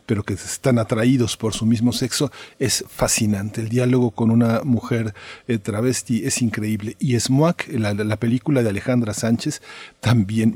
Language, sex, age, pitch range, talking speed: Spanish, male, 40-59, 110-130 Hz, 160 wpm